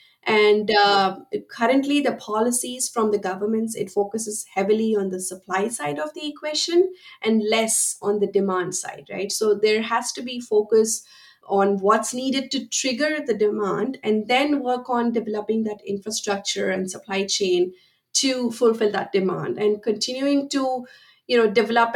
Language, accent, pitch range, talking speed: English, Indian, 205-240 Hz, 160 wpm